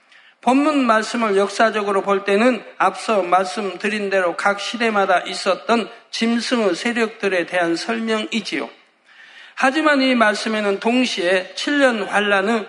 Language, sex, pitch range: Korean, male, 190-235 Hz